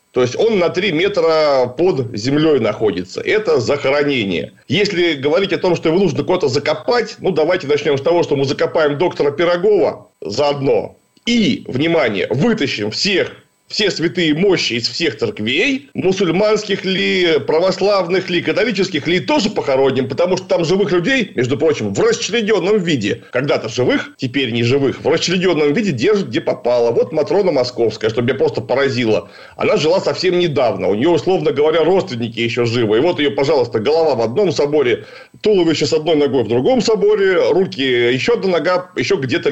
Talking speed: 165 wpm